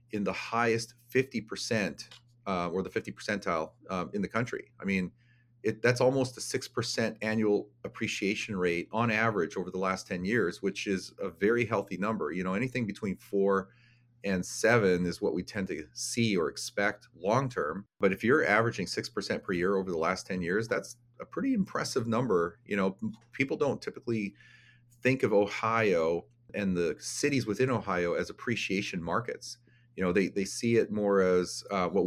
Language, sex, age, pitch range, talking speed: English, male, 40-59, 95-120 Hz, 180 wpm